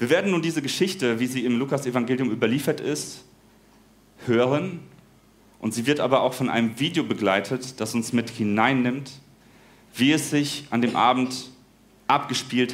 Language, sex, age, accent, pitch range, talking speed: German, male, 40-59, German, 110-130 Hz, 155 wpm